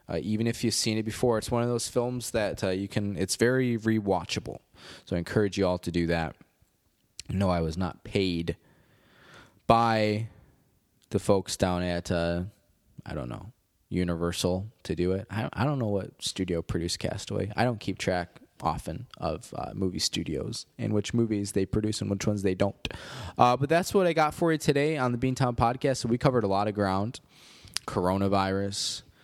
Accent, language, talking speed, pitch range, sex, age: American, English, 190 wpm, 95-120 Hz, male, 20-39